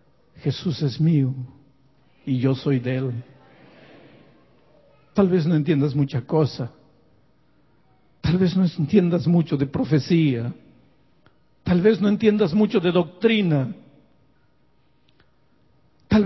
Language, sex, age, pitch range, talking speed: Spanish, male, 60-79, 140-205 Hz, 105 wpm